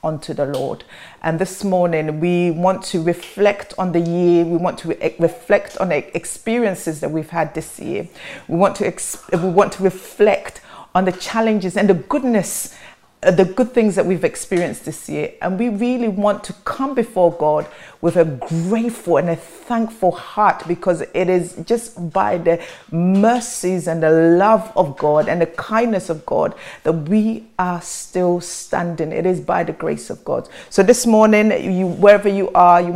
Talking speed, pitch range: 180 wpm, 170-200 Hz